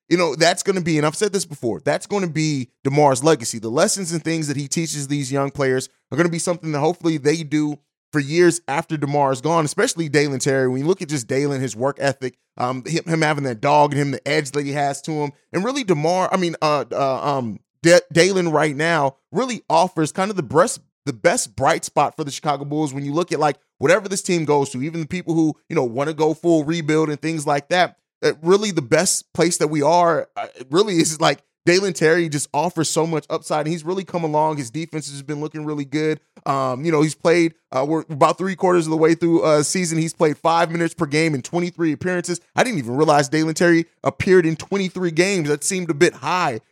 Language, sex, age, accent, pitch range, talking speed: English, male, 30-49, American, 145-170 Hz, 235 wpm